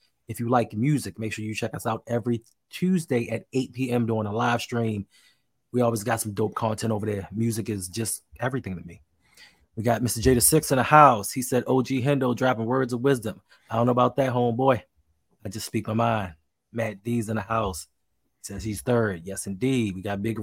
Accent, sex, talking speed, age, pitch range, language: American, male, 215 wpm, 20-39, 110-130 Hz, English